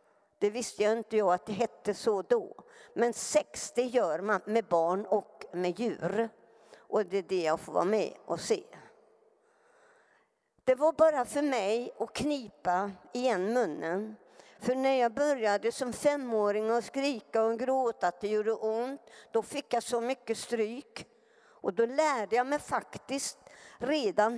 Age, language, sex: 60-79, Swedish, female